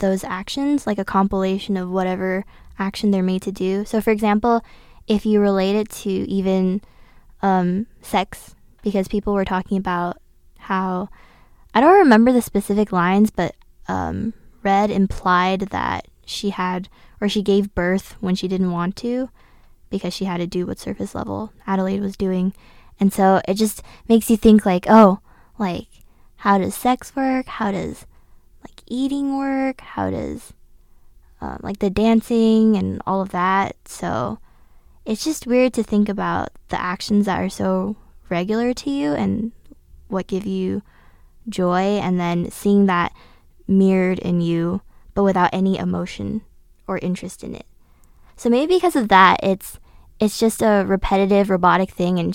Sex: female